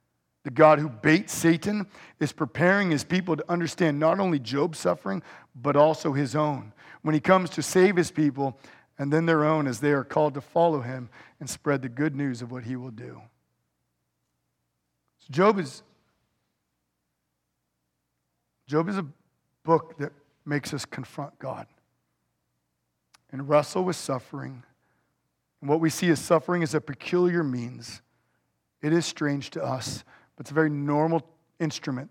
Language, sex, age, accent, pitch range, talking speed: English, male, 50-69, American, 120-155 Hz, 155 wpm